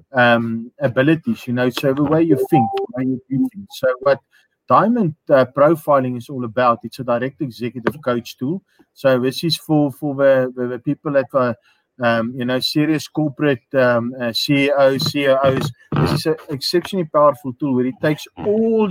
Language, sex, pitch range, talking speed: English, male, 125-150 Hz, 165 wpm